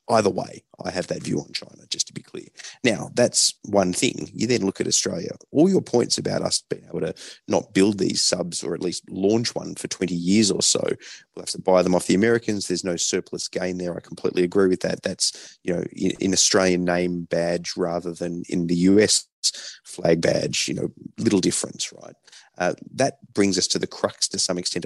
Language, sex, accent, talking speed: English, male, Australian, 220 wpm